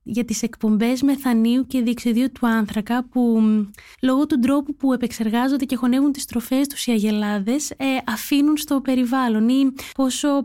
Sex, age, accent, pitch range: female, 20-39, native, 205-260 Hz